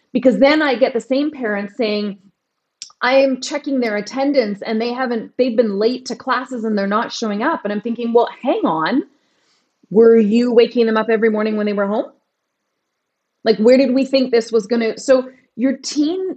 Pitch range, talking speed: 205-260 Hz, 200 wpm